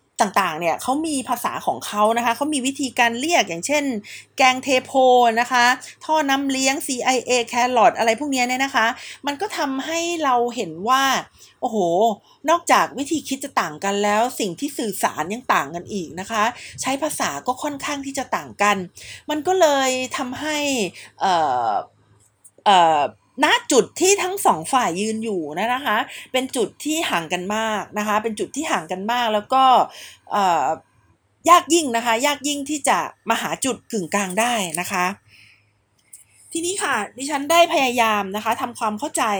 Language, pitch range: Thai, 210-280 Hz